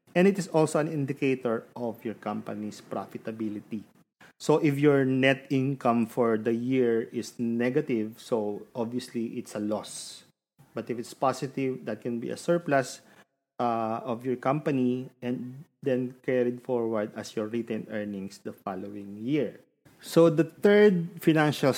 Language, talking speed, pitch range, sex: English, 145 wpm, 110-135 Hz, male